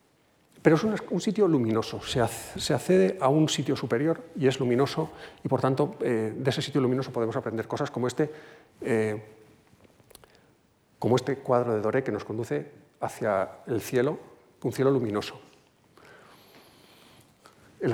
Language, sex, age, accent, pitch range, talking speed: Spanish, male, 40-59, Spanish, 125-165 Hz, 145 wpm